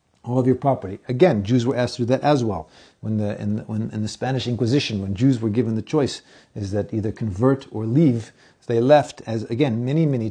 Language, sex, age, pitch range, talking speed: English, male, 40-59, 110-140 Hz, 240 wpm